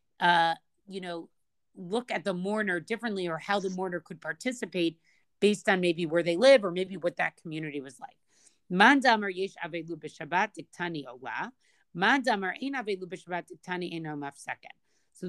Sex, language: female, English